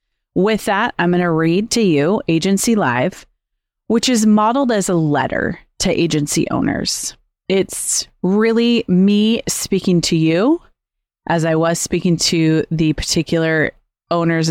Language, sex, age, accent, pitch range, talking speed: English, female, 30-49, American, 160-195 Hz, 135 wpm